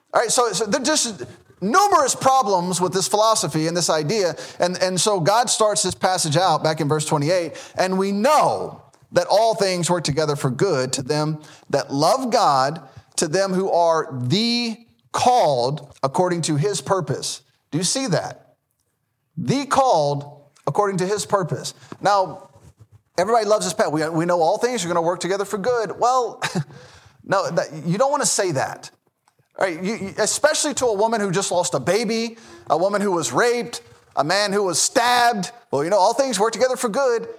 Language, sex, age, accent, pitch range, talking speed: English, male, 30-49, American, 155-225 Hz, 190 wpm